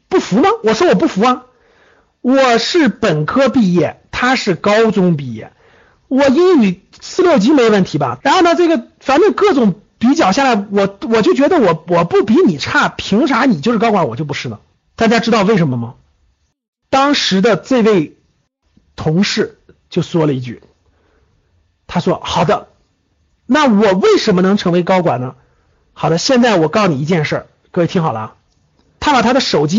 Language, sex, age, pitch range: Chinese, male, 50-69, 170-245 Hz